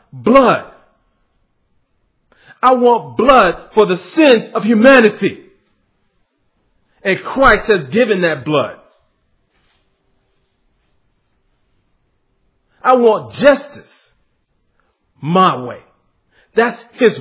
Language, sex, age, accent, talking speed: English, male, 40-59, American, 75 wpm